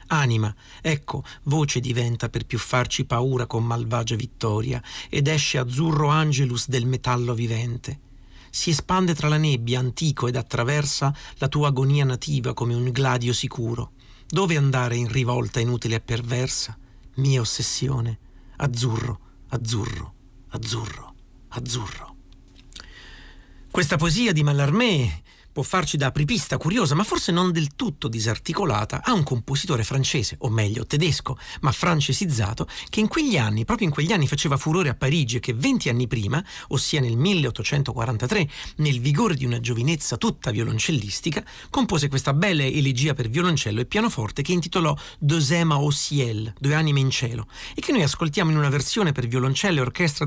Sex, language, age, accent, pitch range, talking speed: male, Italian, 50-69, native, 120-150 Hz, 150 wpm